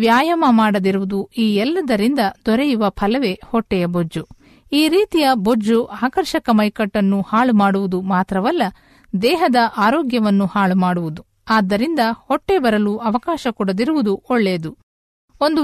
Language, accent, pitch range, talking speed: Kannada, native, 195-260 Hz, 105 wpm